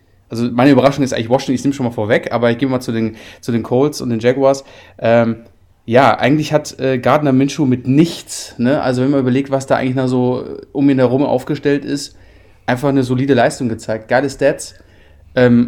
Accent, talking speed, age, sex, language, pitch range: German, 200 wpm, 30-49, male, German, 120-140 Hz